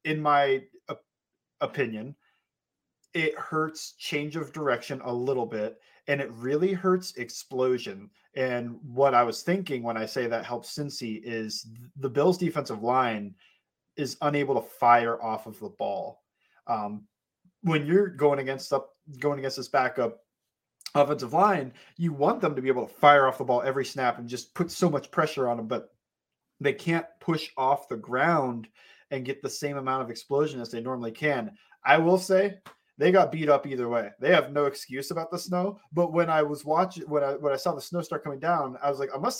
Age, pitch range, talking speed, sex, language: 30-49, 120-160 Hz, 190 wpm, male, English